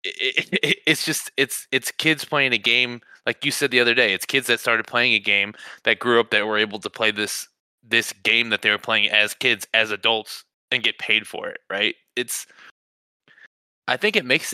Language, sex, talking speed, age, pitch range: English, male, 220 wpm, 20-39, 105-130 Hz